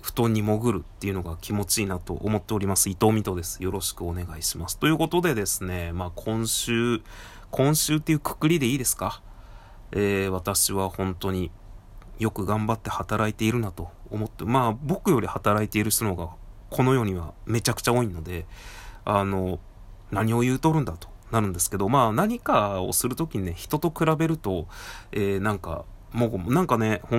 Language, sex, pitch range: Japanese, male, 95-120 Hz